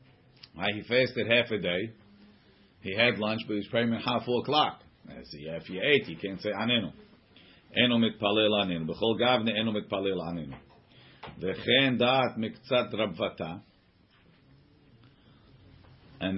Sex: male